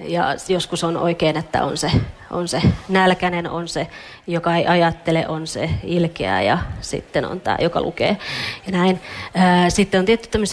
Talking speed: 165 wpm